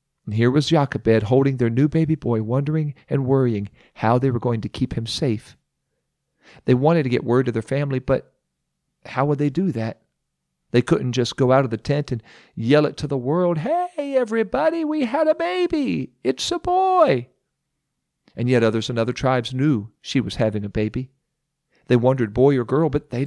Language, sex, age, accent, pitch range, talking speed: English, male, 40-59, American, 115-150 Hz, 195 wpm